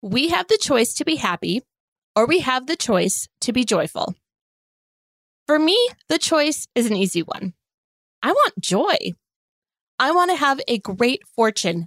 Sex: female